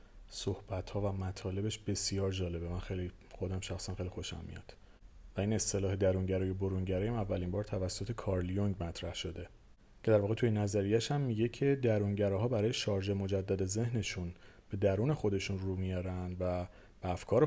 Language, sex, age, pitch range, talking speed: Persian, male, 30-49, 95-120 Hz, 165 wpm